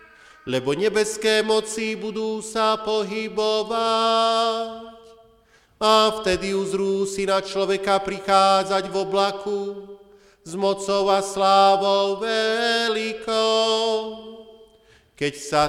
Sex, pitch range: male, 200-225 Hz